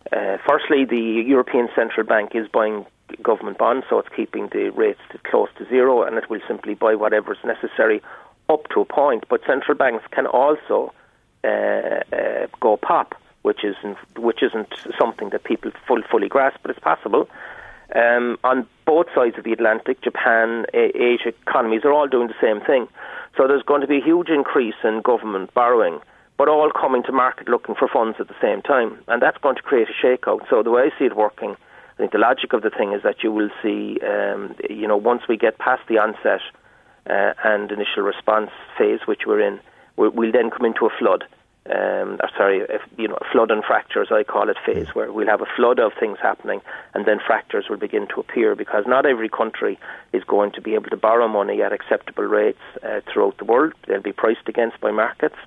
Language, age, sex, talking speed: English, 40-59, male, 210 wpm